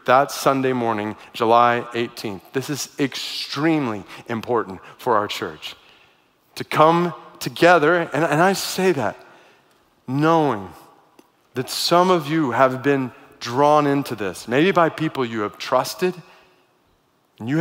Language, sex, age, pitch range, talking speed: English, male, 30-49, 120-160 Hz, 130 wpm